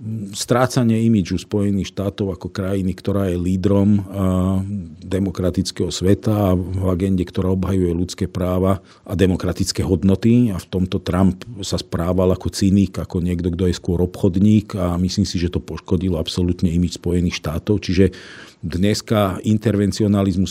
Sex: male